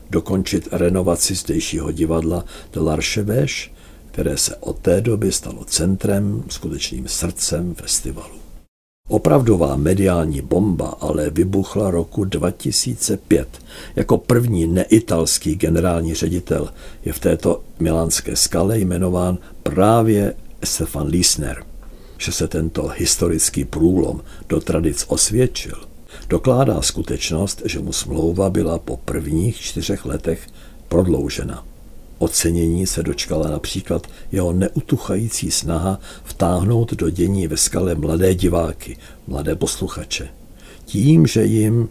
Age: 60-79